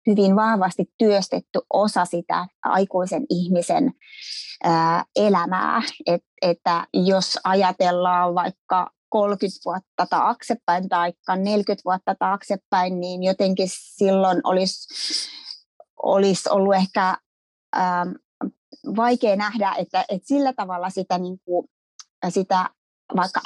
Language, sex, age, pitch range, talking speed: Finnish, female, 20-39, 180-210 Hz, 80 wpm